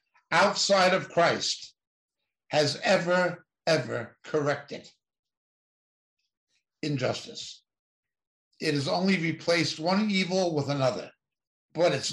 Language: English